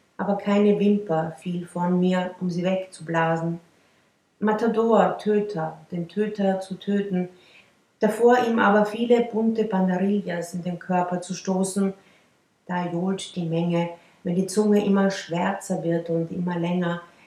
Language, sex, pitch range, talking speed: German, female, 175-210 Hz, 135 wpm